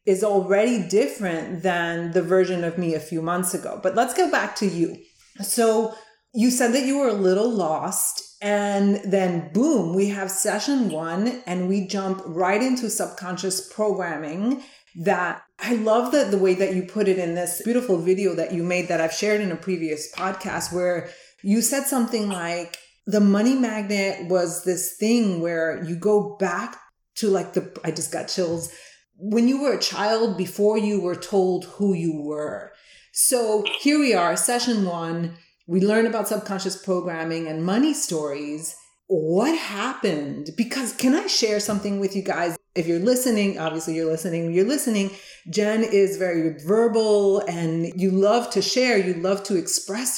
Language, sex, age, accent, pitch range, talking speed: English, female, 30-49, American, 175-225 Hz, 170 wpm